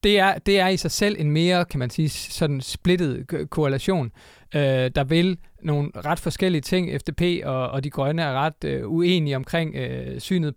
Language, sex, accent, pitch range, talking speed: Danish, male, native, 135-170 Hz, 195 wpm